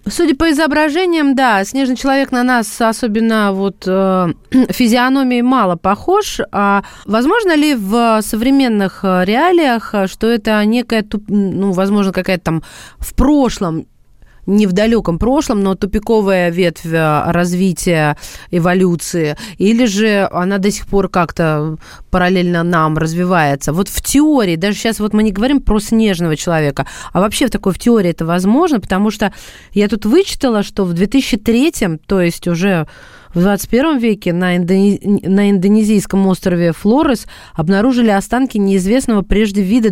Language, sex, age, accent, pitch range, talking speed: Russian, female, 30-49, native, 185-235 Hz, 135 wpm